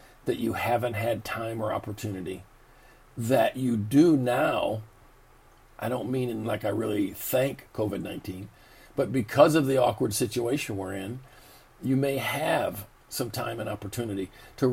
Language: English